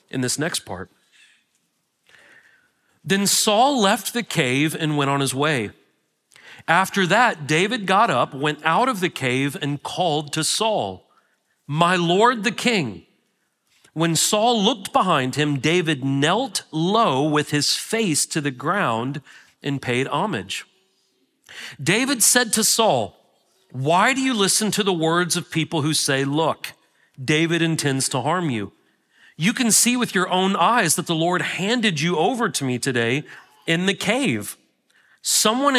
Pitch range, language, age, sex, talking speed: 150-215 Hz, English, 40-59, male, 150 wpm